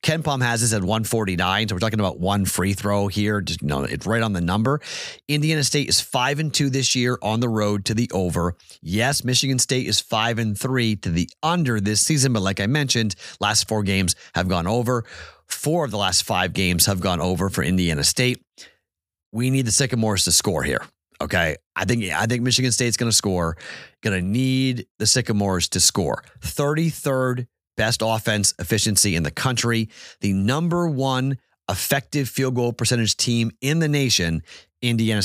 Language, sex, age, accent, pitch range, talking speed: English, male, 30-49, American, 100-130 Hz, 190 wpm